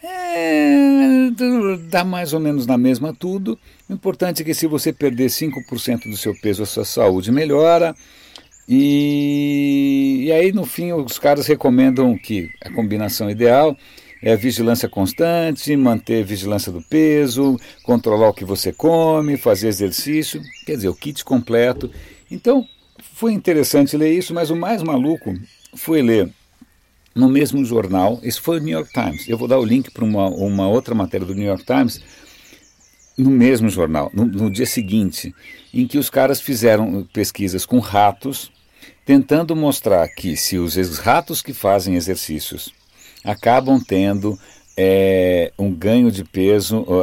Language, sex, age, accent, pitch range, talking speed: Portuguese, male, 60-79, Brazilian, 105-145 Hz, 155 wpm